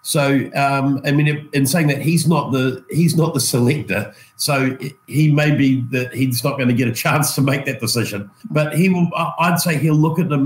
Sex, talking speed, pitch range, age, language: male, 225 wpm, 125-150 Hz, 50-69, English